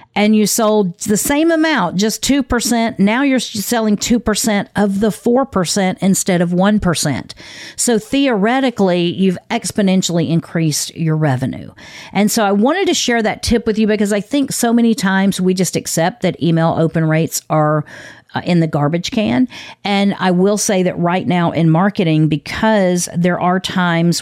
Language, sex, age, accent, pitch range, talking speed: English, female, 50-69, American, 160-205 Hz, 165 wpm